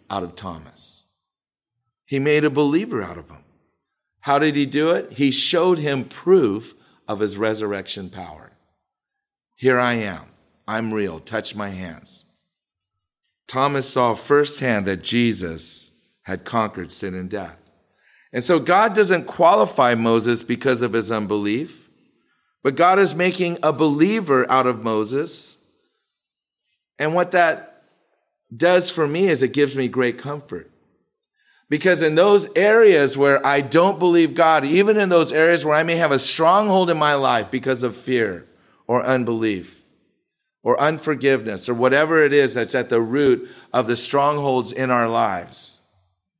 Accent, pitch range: American, 105-150 Hz